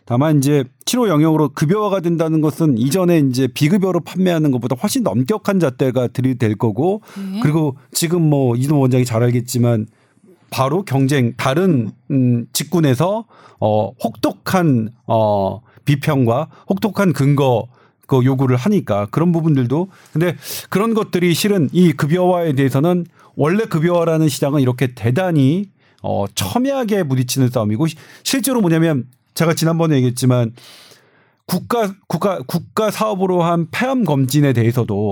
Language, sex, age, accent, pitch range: Korean, male, 40-59, native, 130-180 Hz